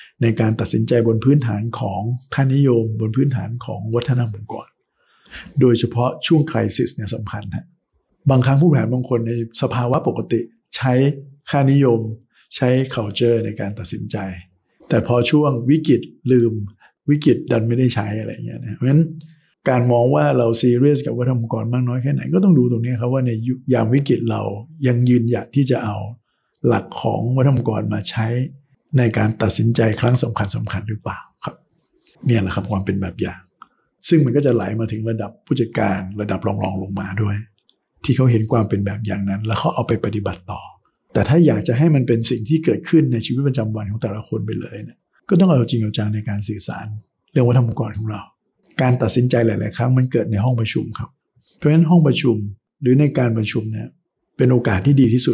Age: 60-79